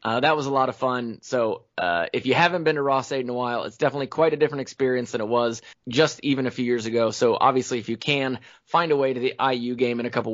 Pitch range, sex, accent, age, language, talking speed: 120-155 Hz, male, American, 20-39, English, 285 wpm